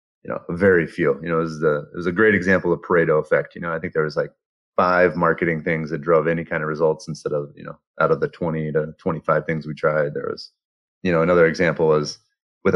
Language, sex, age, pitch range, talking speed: English, male, 30-49, 75-85 Hz, 260 wpm